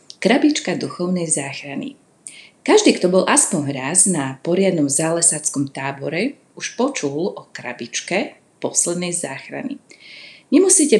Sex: female